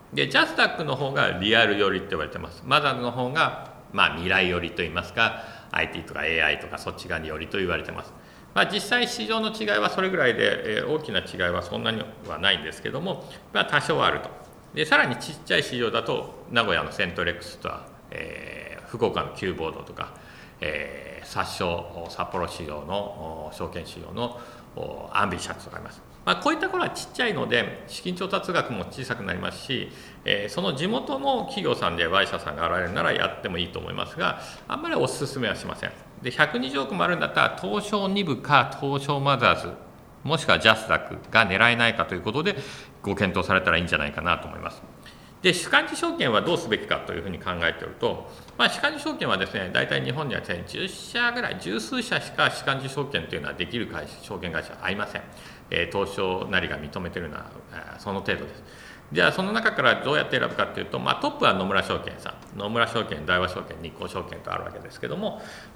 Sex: male